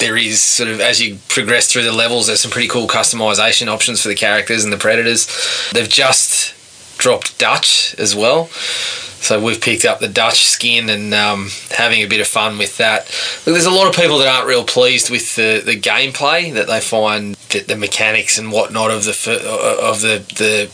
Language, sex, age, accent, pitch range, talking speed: English, male, 20-39, Australian, 110-130 Hz, 205 wpm